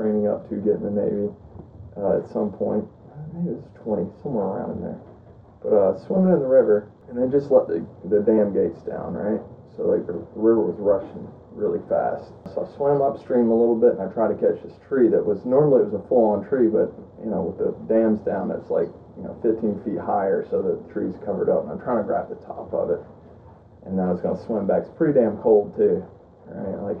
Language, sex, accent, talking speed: English, male, American, 240 wpm